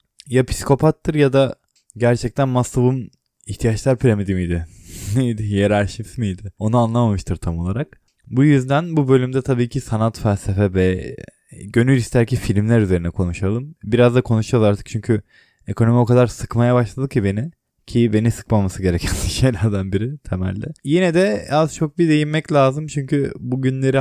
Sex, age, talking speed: male, 20-39, 145 wpm